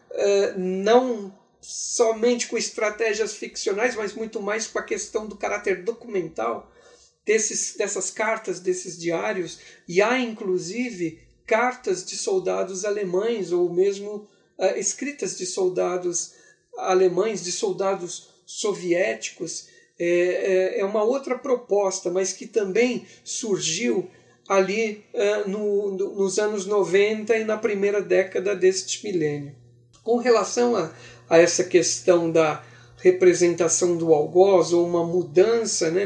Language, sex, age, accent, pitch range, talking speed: Portuguese, male, 50-69, Brazilian, 175-225 Hz, 110 wpm